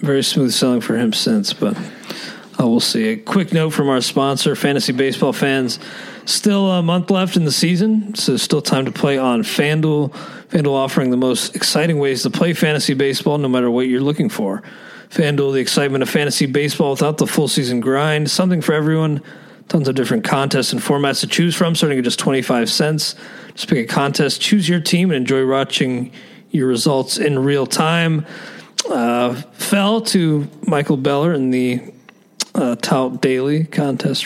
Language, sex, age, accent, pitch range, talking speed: English, male, 40-59, American, 135-175 Hz, 180 wpm